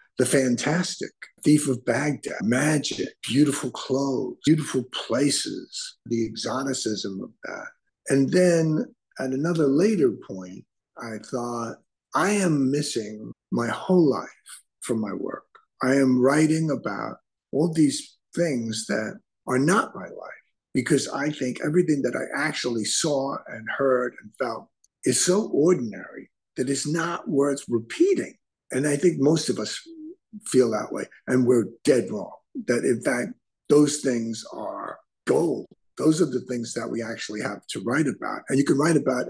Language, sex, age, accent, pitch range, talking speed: English, male, 50-69, American, 120-155 Hz, 150 wpm